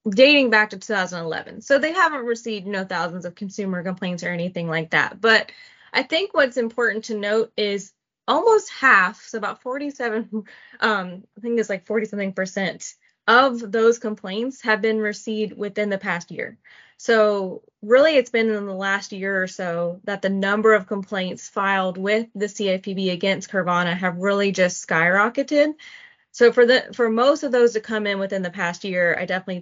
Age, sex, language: 20-39, female, English